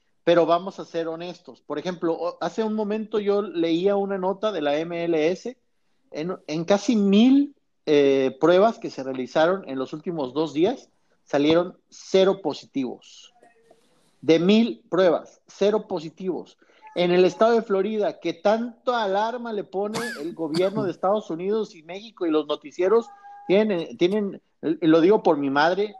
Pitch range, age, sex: 150-200 Hz, 50-69, male